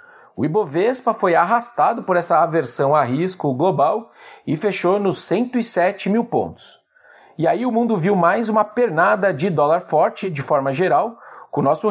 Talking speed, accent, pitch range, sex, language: 165 wpm, Brazilian, 155-220 Hz, male, Portuguese